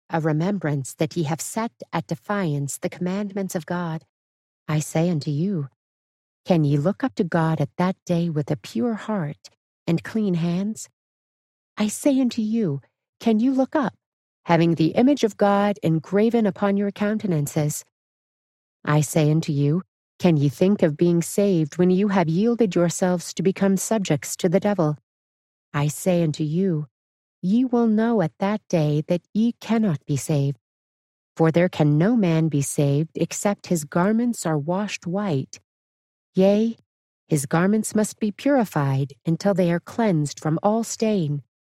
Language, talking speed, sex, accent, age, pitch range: English, 160 wpm, female, American, 40-59, 155-205 Hz